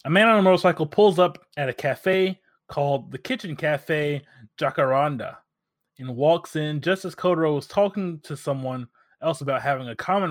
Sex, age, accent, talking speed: male, 20-39, American, 175 wpm